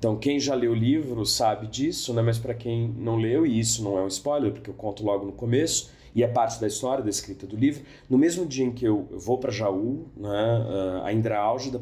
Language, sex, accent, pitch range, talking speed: Portuguese, male, Brazilian, 100-135 Hz, 250 wpm